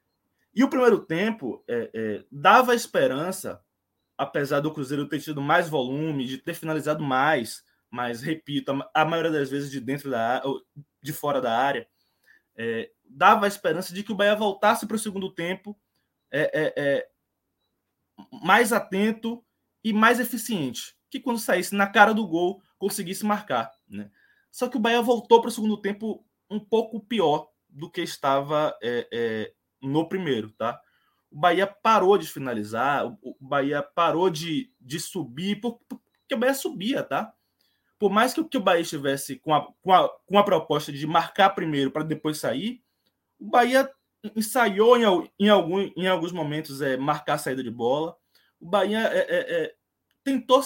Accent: Brazilian